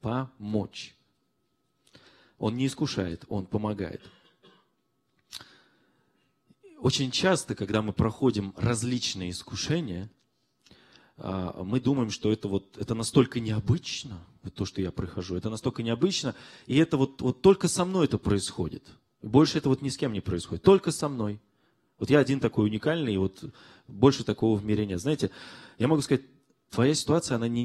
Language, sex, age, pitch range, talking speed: Russian, male, 30-49, 105-135 Hz, 145 wpm